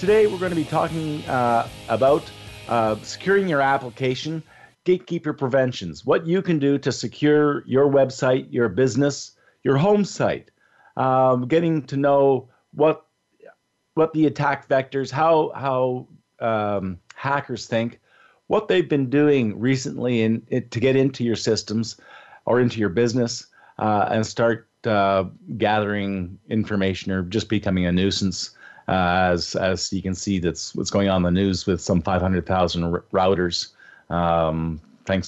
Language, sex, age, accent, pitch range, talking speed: English, male, 50-69, American, 105-140 Hz, 150 wpm